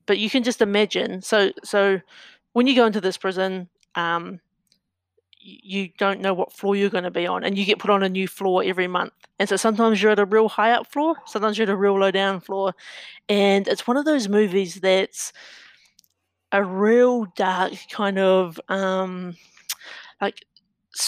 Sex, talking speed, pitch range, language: female, 190 wpm, 185-210 Hz, English